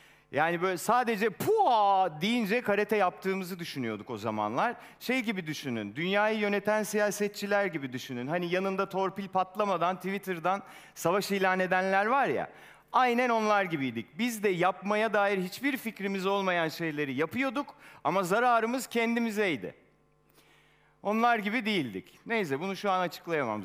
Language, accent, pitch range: Turkish, native, 170-230 Hz